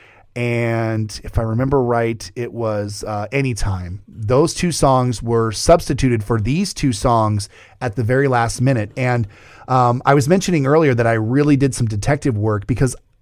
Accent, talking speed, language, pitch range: American, 170 wpm, English, 110-140 Hz